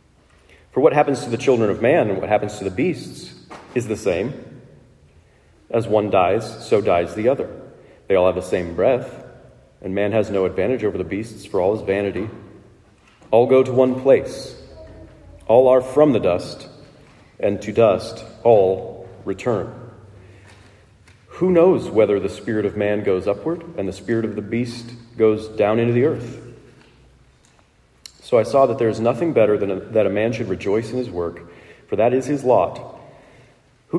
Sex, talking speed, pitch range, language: male, 175 wpm, 100-125 Hz, English